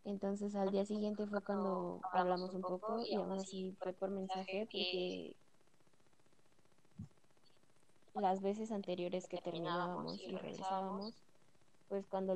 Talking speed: 120 wpm